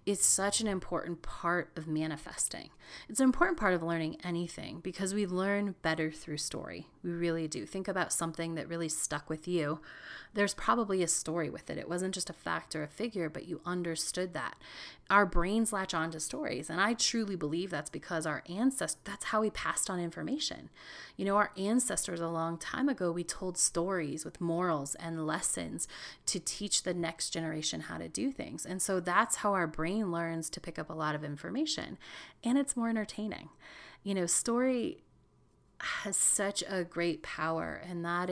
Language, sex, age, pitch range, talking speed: English, female, 30-49, 160-195 Hz, 190 wpm